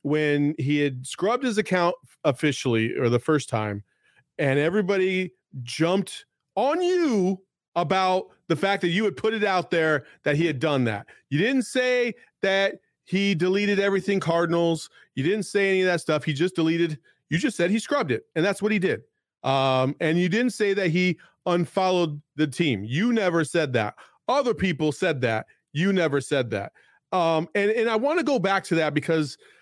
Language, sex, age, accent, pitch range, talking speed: English, male, 40-59, American, 155-220 Hz, 190 wpm